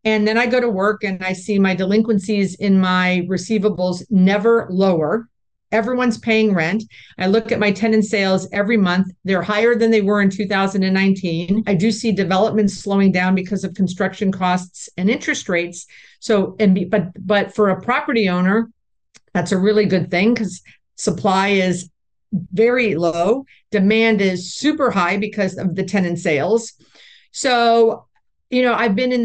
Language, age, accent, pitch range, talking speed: English, 50-69, American, 185-225 Hz, 165 wpm